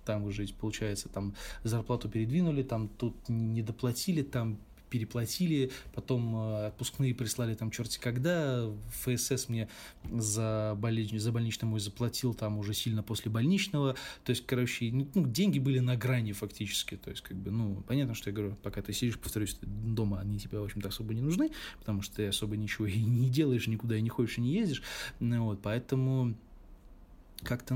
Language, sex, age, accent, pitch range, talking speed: Russian, male, 20-39, native, 105-130 Hz, 170 wpm